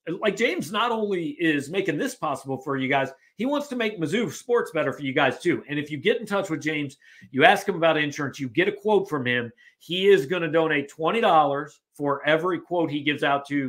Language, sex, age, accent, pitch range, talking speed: English, male, 40-59, American, 135-170 Hz, 235 wpm